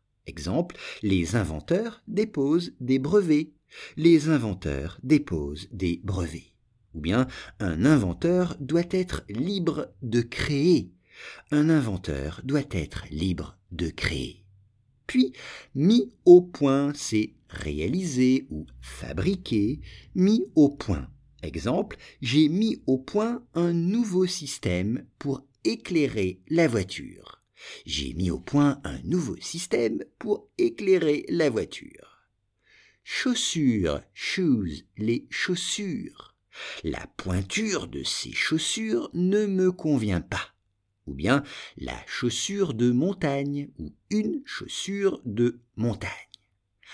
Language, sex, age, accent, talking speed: English, male, 50-69, French, 110 wpm